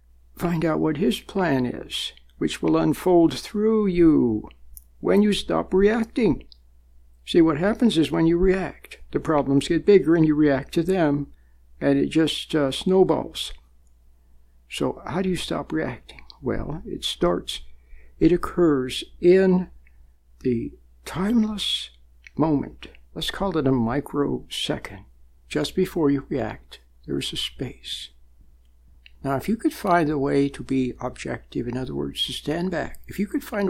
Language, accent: English, American